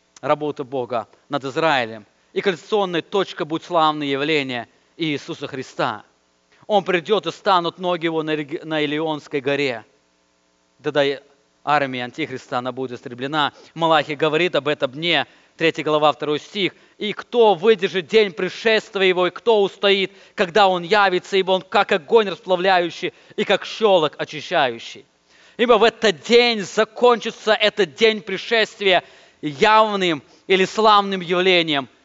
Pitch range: 145-205 Hz